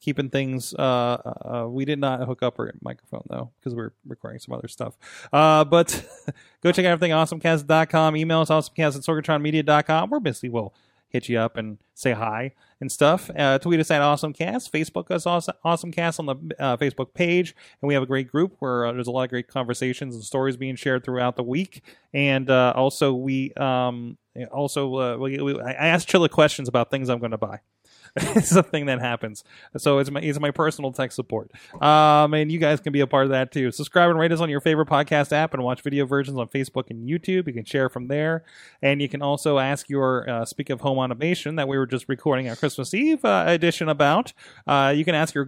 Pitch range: 130-155 Hz